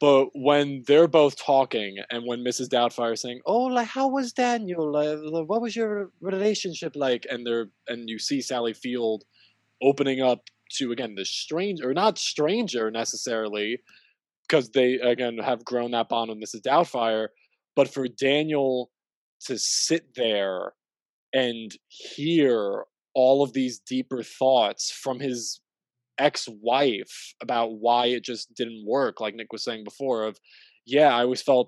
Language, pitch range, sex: English, 115-145 Hz, male